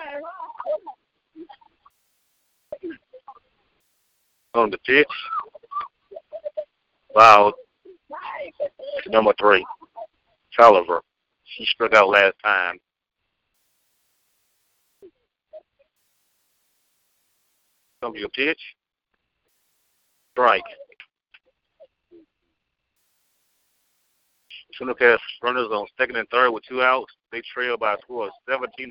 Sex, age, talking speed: male, 50-69, 70 wpm